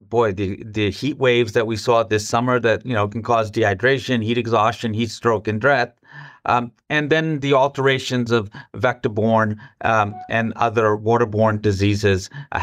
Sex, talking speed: male, 165 wpm